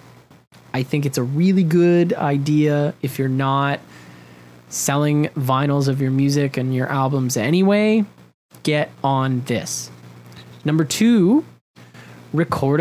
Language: English